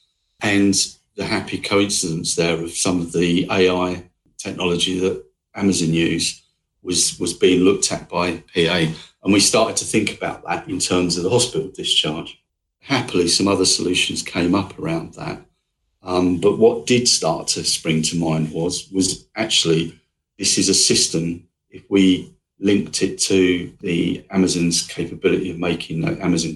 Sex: male